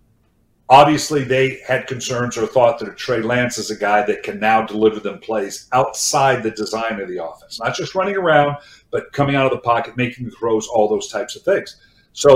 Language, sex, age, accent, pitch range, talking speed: English, male, 50-69, American, 120-150 Hz, 205 wpm